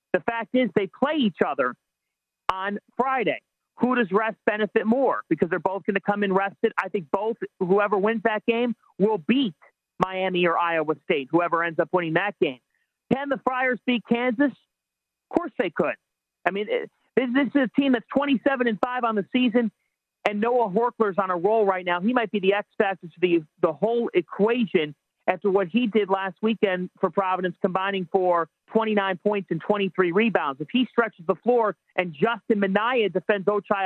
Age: 40-59